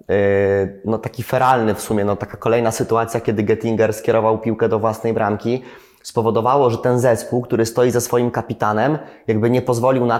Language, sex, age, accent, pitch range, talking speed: Polish, male, 20-39, native, 105-120 Hz, 170 wpm